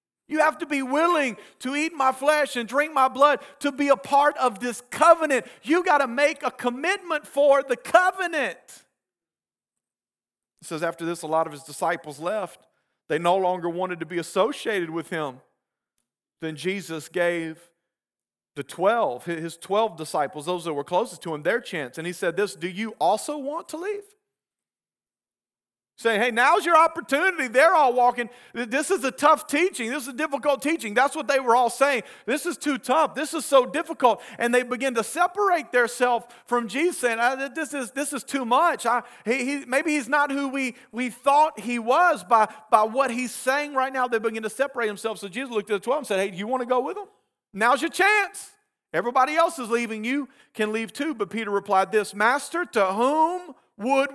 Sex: male